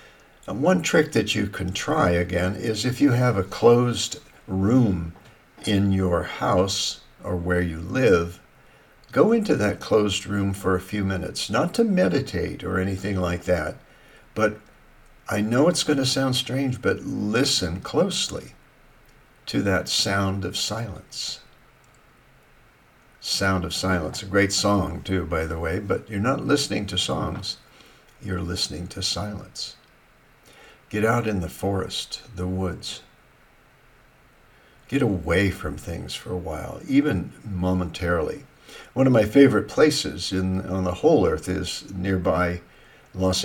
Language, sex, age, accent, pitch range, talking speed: English, male, 60-79, American, 90-110 Hz, 140 wpm